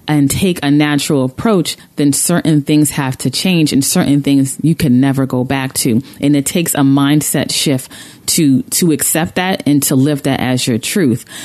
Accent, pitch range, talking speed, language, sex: American, 145-195 Hz, 195 wpm, English, female